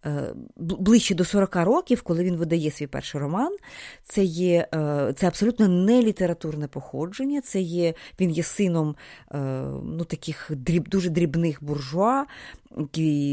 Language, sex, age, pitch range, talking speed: Ukrainian, female, 30-49, 160-210 Hz, 130 wpm